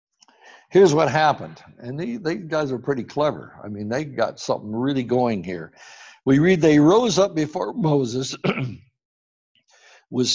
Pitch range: 115-190 Hz